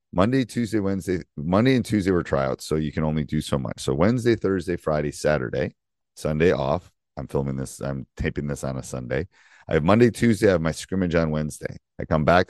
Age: 40-59